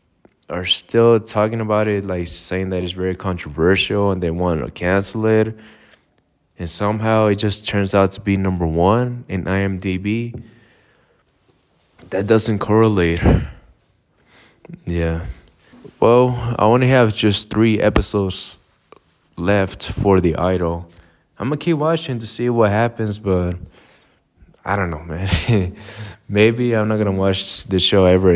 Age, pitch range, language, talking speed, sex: 20-39, 90-110 Hz, English, 140 wpm, male